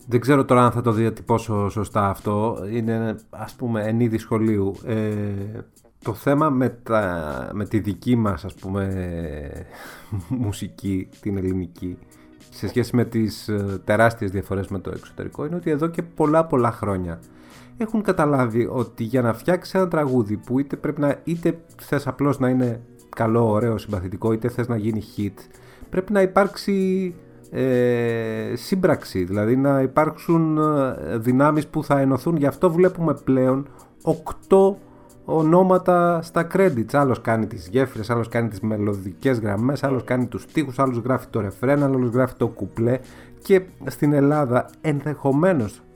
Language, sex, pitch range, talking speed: Greek, male, 110-155 Hz, 150 wpm